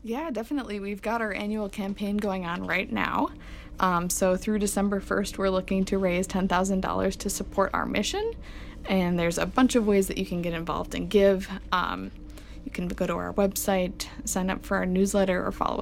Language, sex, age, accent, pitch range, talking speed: English, female, 20-39, American, 185-205 Hz, 195 wpm